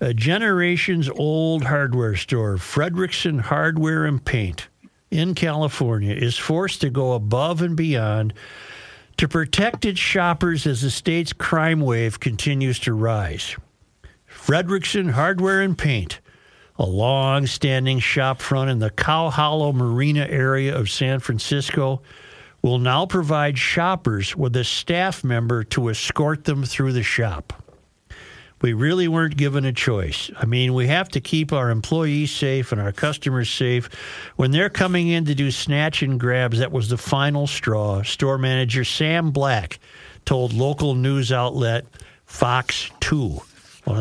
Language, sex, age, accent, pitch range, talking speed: English, male, 50-69, American, 120-150 Hz, 140 wpm